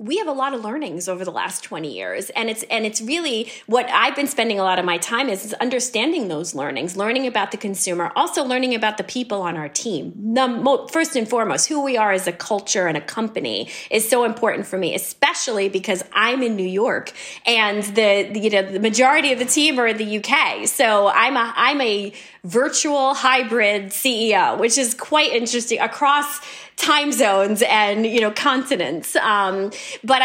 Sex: female